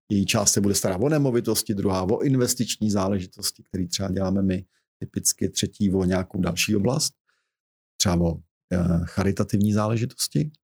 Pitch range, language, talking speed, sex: 100-135 Hz, Czech, 145 wpm, male